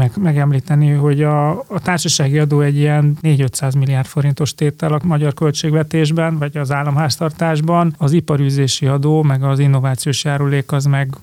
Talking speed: 150 wpm